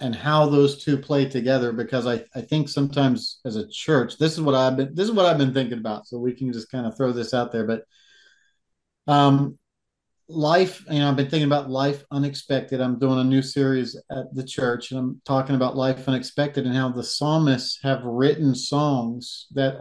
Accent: American